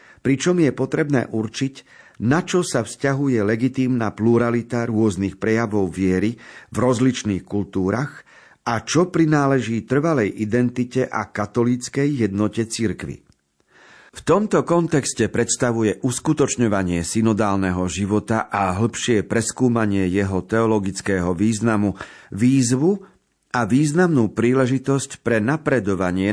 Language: Slovak